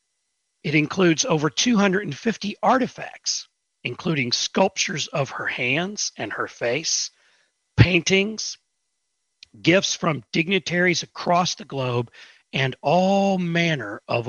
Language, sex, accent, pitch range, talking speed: English, male, American, 130-185 Hz, 100 wpm